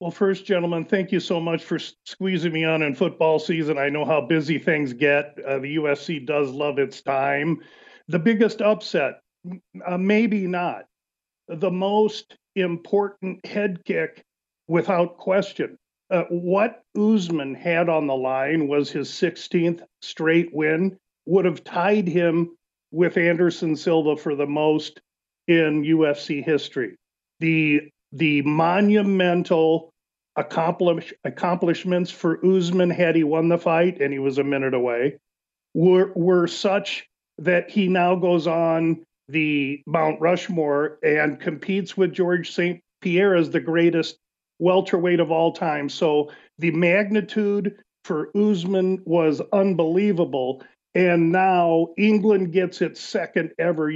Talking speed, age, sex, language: 135 wpm, 50-69, male, English